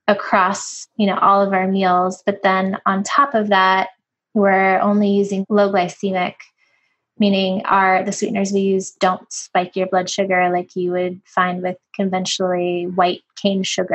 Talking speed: 165 wpm